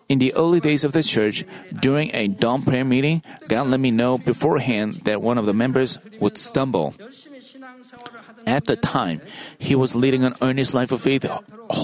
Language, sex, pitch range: Korean, male, 120-170 Hz